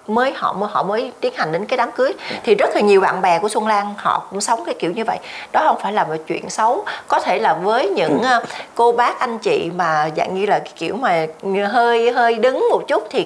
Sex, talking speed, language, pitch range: female, 255 wpm, Vietnamese, 195-265 Hz